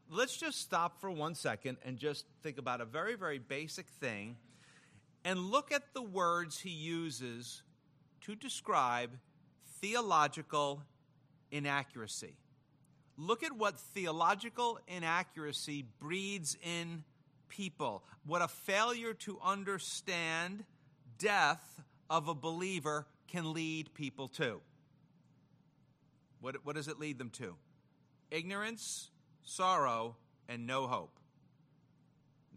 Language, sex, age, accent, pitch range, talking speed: English, male, 50-69, American, 145-200 Hz, 110 wpm